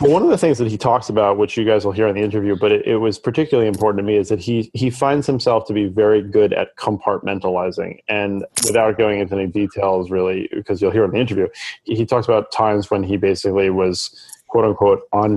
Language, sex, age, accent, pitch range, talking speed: English, male, 30-49, American, 100-125 Hz, 235 wpm